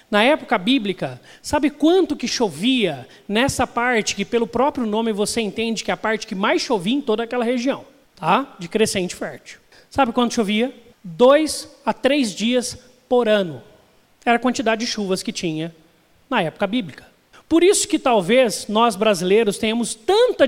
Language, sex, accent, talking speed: Portuguese, male, Brazilian, 165 wpm